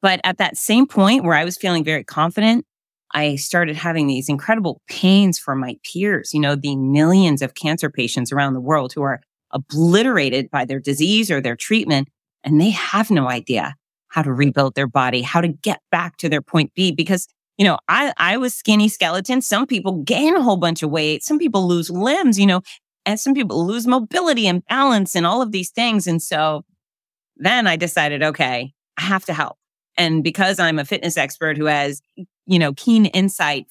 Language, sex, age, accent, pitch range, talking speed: English, female, 30-49, American, 145-190 Hz, 200 wpm